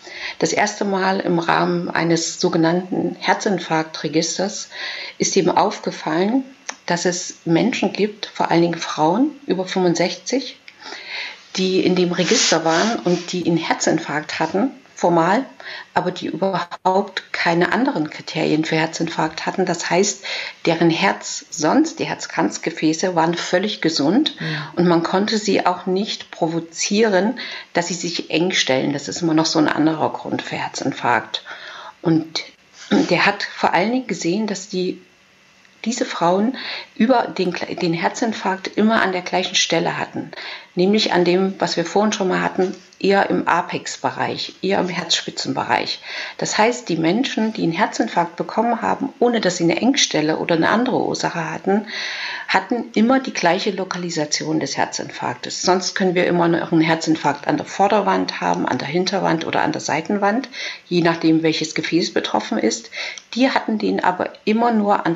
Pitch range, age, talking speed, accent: 170-215 Hz, 50-69, 155 wpm, German